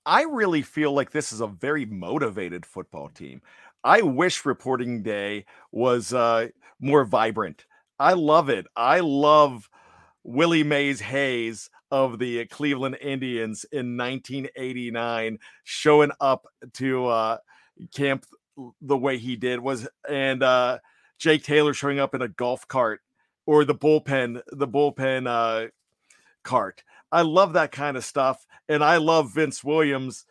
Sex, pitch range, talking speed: male, 125-150 Hz, 145 wpm